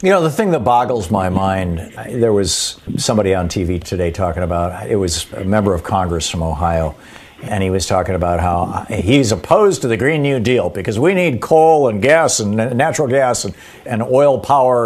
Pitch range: 110-145 Hz